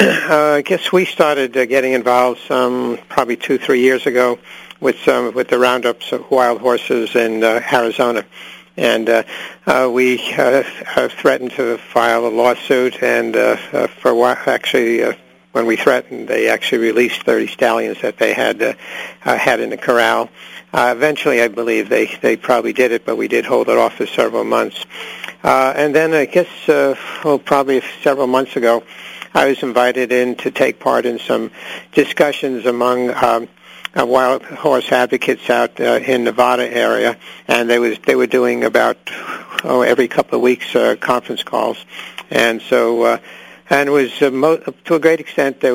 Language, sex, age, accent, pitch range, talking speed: English, male, 50-69, American, 120-130 Hz, 180 wpm